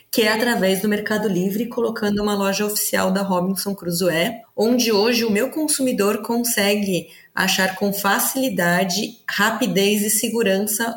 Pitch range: 190-225 Hz